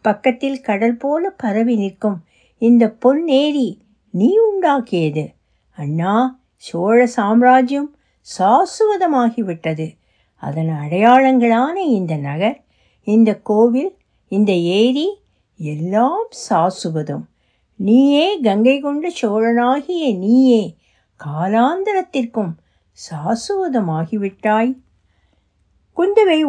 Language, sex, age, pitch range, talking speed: Tamil, female, 60-79, 175-245 Hz, 70 wpm